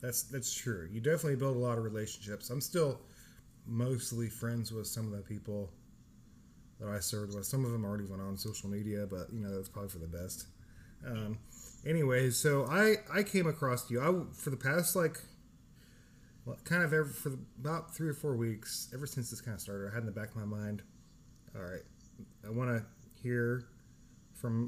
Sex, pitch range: male, 110-135 Hz